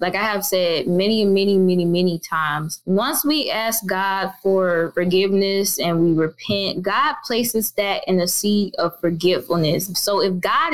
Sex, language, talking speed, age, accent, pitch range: female, English, 160 wpm, 20-39, American, 185-215 Hz